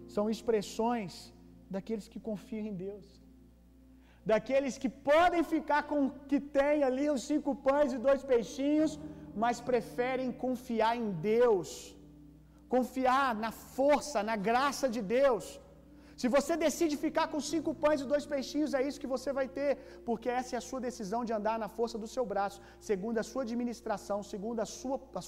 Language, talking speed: Gujarati, 170 wpm